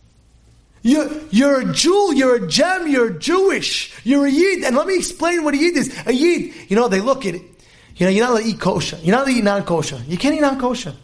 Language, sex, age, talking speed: English, male, 30-49, 250 wpm